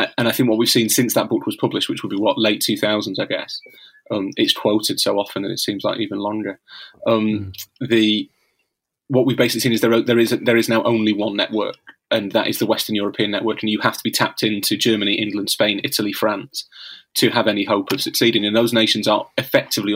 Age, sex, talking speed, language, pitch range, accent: 30-49, male, 230 wpm, English, 105-125 Hz, British